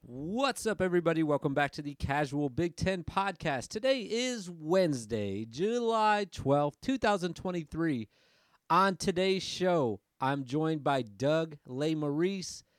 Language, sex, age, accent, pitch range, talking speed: English, male, 30-49, American, 135-180 Hz, 115 wpm